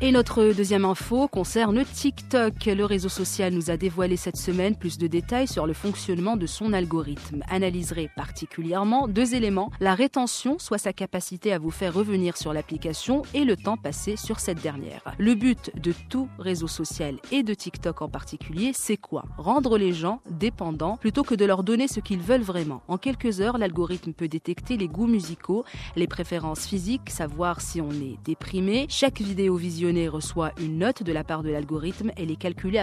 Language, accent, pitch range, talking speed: French, French, 165-220 Hz, 185 wpm